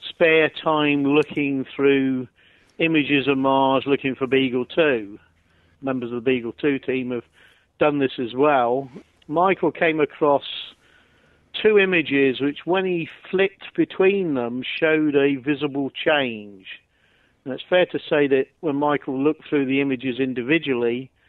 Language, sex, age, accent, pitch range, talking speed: English, male, 50-69, British, 125-145 Hz, 140 wpm